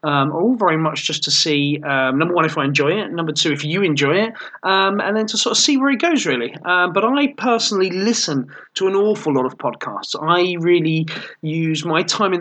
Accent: British